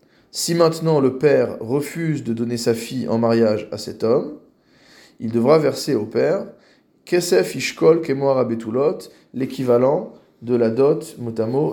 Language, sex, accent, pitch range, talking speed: French, male, French, 115-150 Hz, 140 wpm